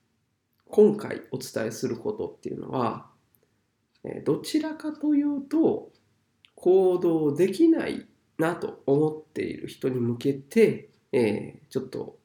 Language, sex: Japanese, male